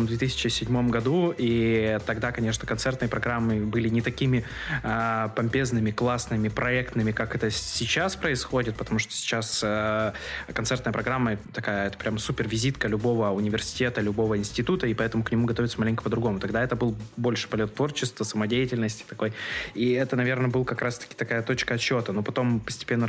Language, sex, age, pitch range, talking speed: Russian, male, 20-39, 110-125 Hz, 160 wpm